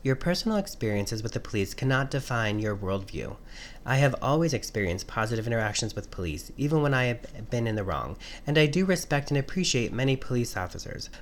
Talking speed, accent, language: 185 wpm, American, English